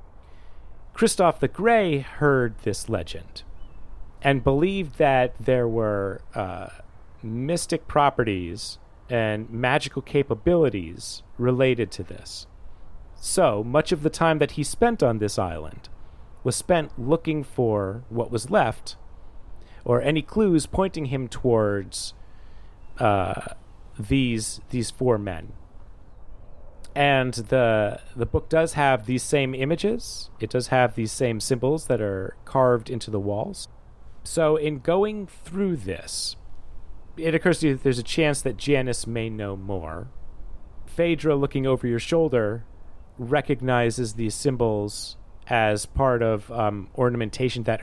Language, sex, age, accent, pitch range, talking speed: English, male, 30-49, American, 100-140 Hz, 130 wpm